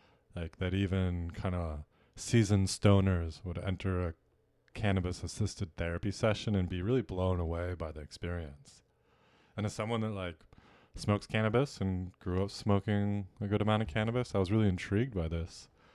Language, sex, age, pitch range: English, male, 30-49, 85-105 Hz